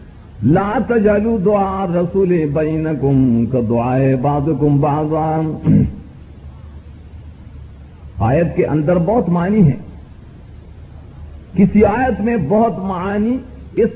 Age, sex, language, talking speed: 50-69, male, Urdu, 70 wpm